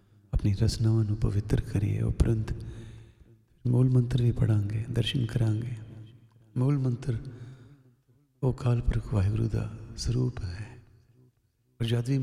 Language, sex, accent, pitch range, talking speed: English, male, Indian, 110-125 Hz, 110 wpm